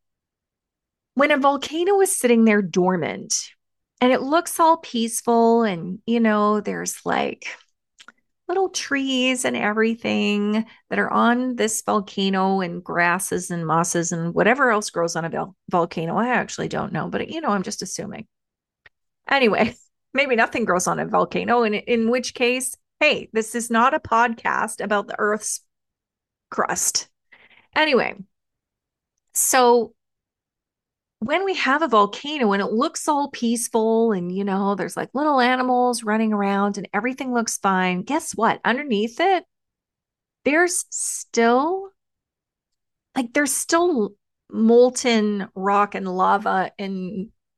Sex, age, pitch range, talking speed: female, 30-49, 205-280 Hz, 135 wpm